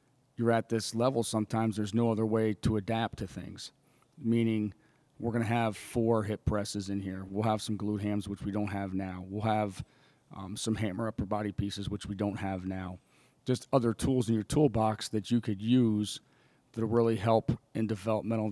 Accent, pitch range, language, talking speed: American, 105-115 Hz, English, 200 wpm